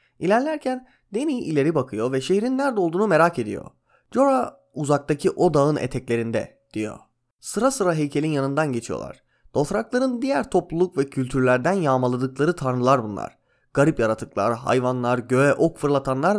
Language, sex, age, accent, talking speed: Turkish, male, 30-49, native, 130 wpm